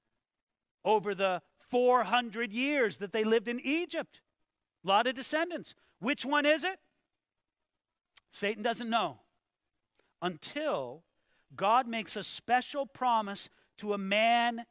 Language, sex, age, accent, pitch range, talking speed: English, male, 40-59, American, 210-285 Hz, 120 wpm